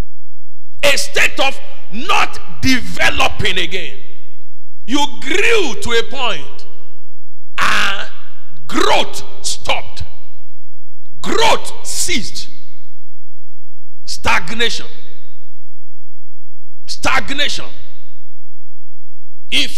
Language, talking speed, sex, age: English, 60 wpm, male, 50-69